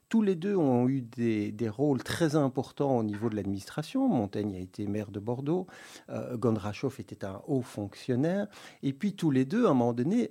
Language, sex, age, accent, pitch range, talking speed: French, male, 50-69, French, 120-175 Hz, 205 wpm